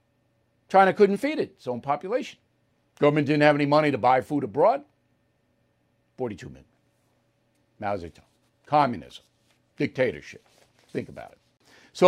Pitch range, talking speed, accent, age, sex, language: 125-175 Hz, 140 wpm, American, 60-79, male, English